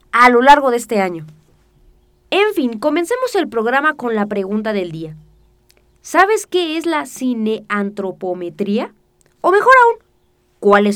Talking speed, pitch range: 135 wpm, 215-315 Hz